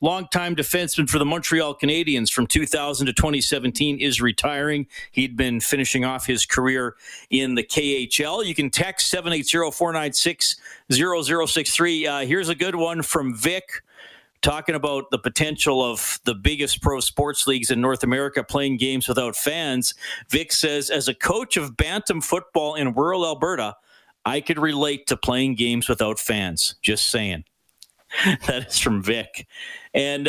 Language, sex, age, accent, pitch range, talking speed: English, male, 40-59, American, 125-165 Hz, 145 wpm